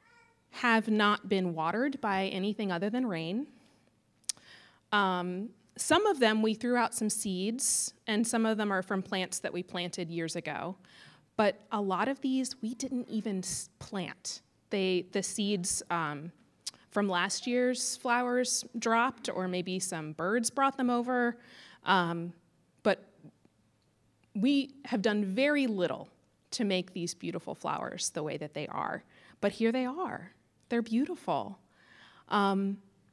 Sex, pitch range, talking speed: female, 200-275 Hz, 145 wpm